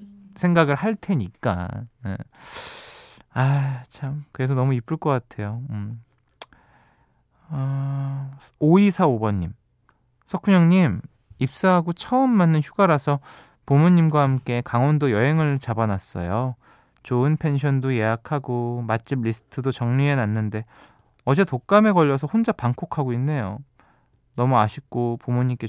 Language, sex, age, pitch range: Korean, male, 20-39, 115-155 Hz